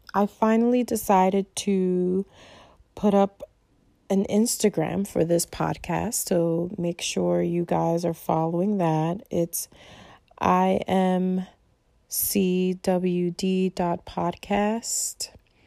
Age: 20-39